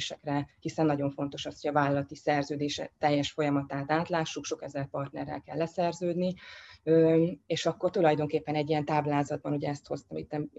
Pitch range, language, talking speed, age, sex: 145-165 Hz, Hungarian, 140 wpm, 20-39, female